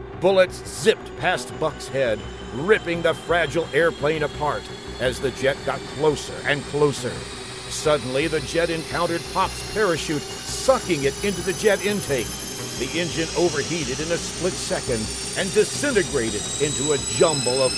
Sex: male